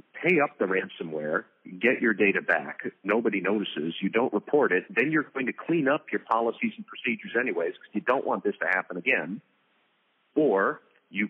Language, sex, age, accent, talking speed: English, male, 40-59, American, 185 wpm